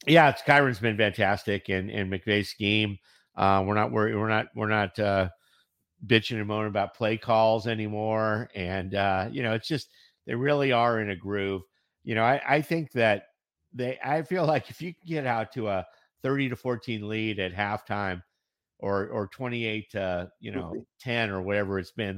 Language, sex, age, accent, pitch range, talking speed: English, male, 50-69, American, 100-120 Hz, 195 wpm